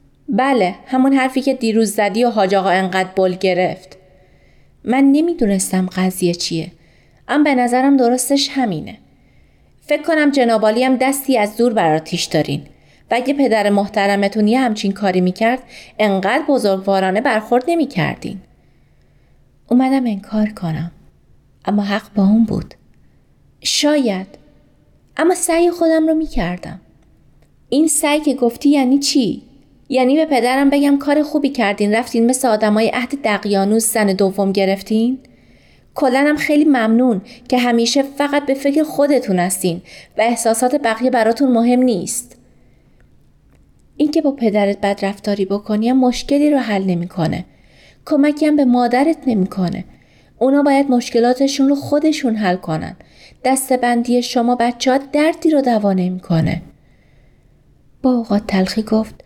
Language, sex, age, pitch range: Persian, female, 30-49, 200-275 Hz